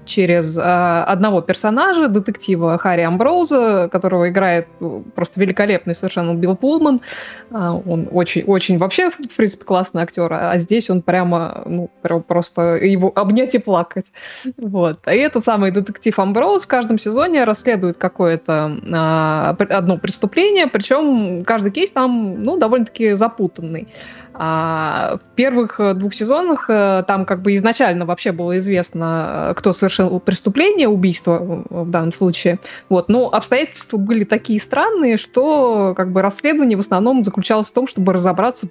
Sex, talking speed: female, 135 wpm